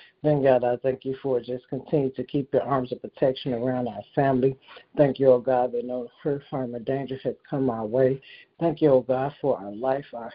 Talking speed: 220 wpm